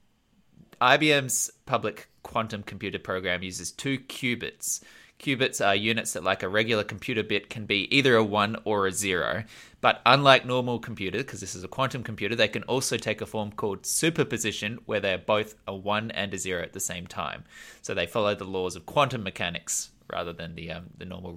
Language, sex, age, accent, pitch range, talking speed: English, male, 20-39, Australian, 95-130 Hz, 195 wpm